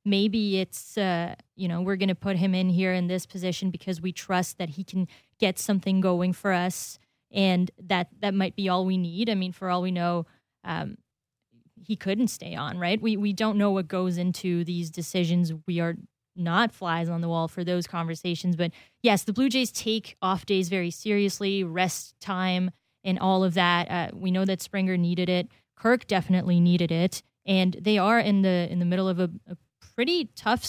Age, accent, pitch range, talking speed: 20-39, American, 175-200 Hz, 205 wpm